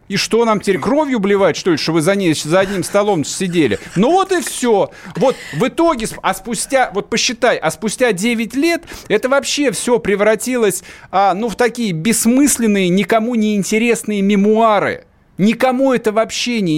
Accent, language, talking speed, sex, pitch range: native, Russian, 170 wpm, male, 155-225 Hz